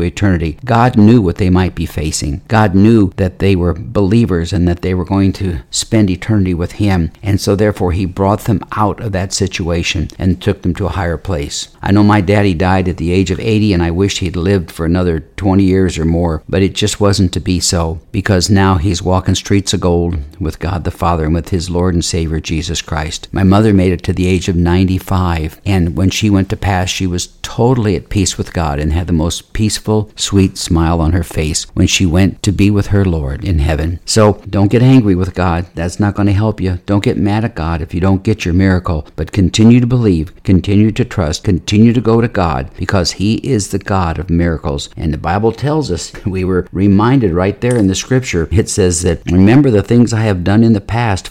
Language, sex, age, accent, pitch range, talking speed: English, male, 50-69, American, 85-105 Hz, 230 wpm